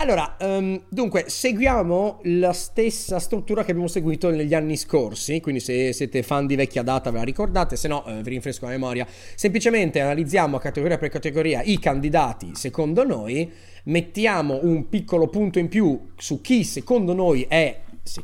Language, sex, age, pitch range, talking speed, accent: Italian, male, 30-49, 125-185 Hz, 165 wpm, native